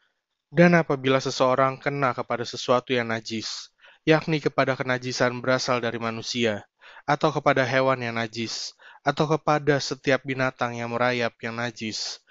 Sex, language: male, Indonesian